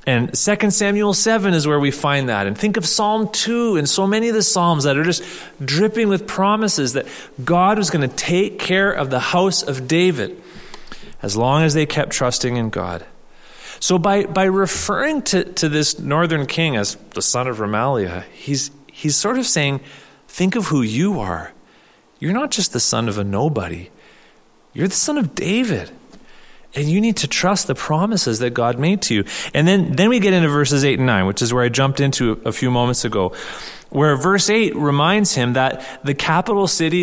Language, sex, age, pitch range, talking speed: English, male, 30-49, 135-190 Hz, 200 wpm